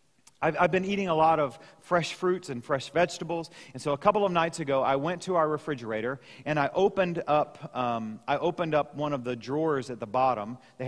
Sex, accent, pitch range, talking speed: male, American, 135-190 Hz, 220 wpm